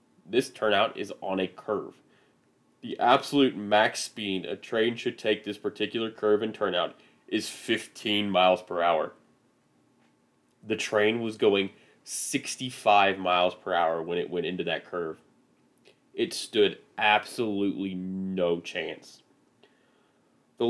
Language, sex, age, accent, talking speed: English, male, 20-39, American, 130 wpm